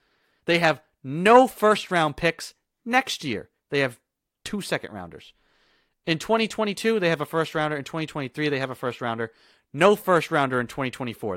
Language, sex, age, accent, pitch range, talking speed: English, male, 30-49, American, 150-225 Hz, 145 wpm